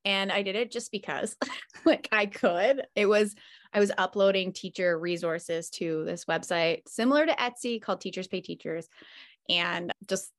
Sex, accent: female, American